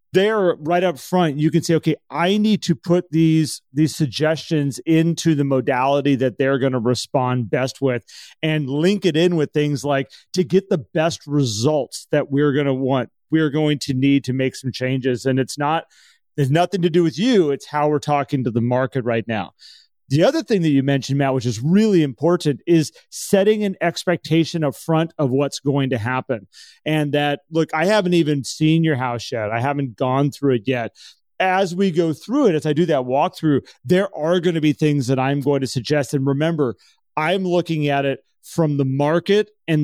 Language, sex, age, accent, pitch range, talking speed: English, male, 30-49, American, 135-170 Hz, 205 wpm